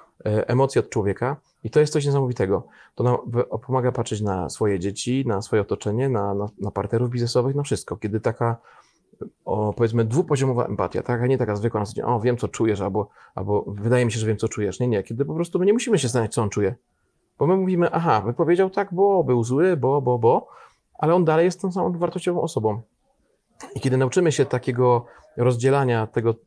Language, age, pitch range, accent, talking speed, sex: Polish, 30-49, 115-145 Hz, native, 205 wpm, male